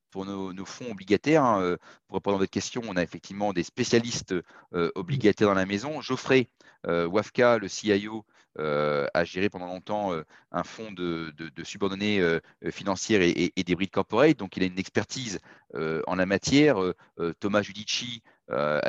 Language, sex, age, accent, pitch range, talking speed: French, male, 30-49, French, 90-110 Hz, 185 wpm